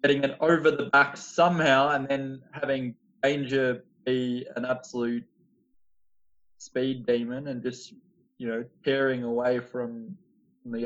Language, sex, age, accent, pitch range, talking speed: English, male, 20-39, Australian, 130-180 Hz, 135 wpm